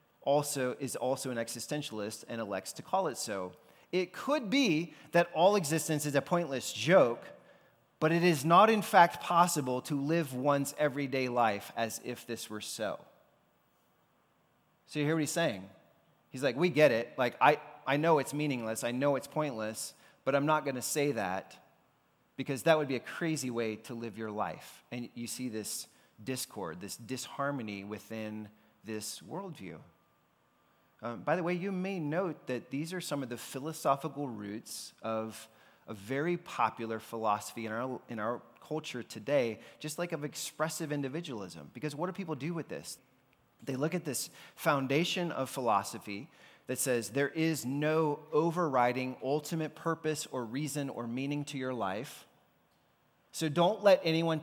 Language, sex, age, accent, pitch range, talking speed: English, male, 30-49, American, 115-155 Hz, 165 wpm